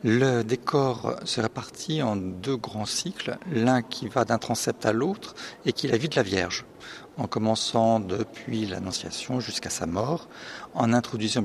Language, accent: French, French